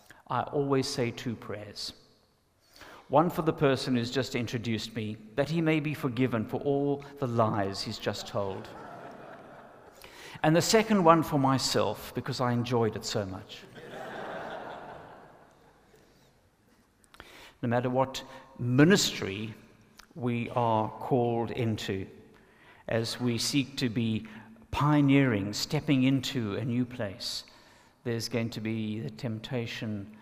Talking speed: 125 wpm